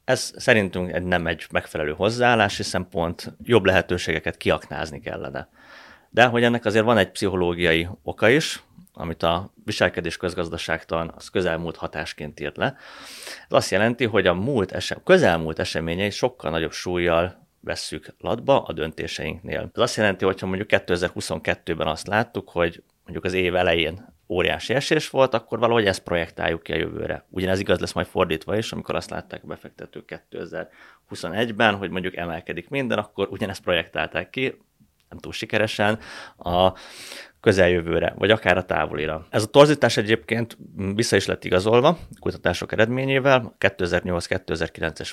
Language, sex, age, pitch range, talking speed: Hungarian, male, 30-49, 85-110 Hz, 145 wpm